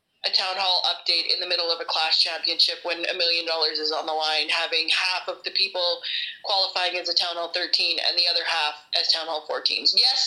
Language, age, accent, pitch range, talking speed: English, 20-39, American, 175-240 Hz, 230 wpm